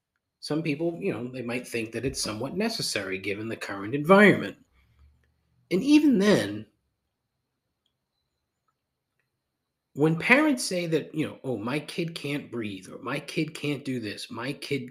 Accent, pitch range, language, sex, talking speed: American, 120-175 Hz, English, male, 150 wpm